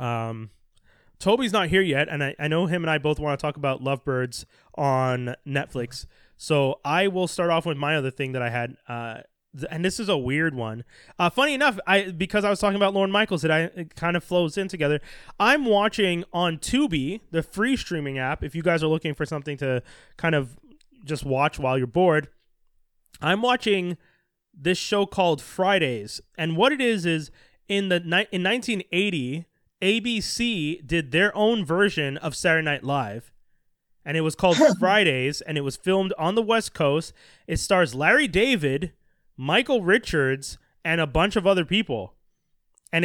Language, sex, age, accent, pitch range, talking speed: English, male, 20-39, American, 145-195 Hz, 185 wpm